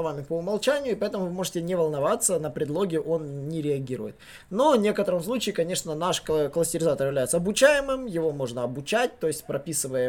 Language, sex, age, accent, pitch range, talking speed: Russian, male, 20-39, native, 140-185 Hz, 175 wpm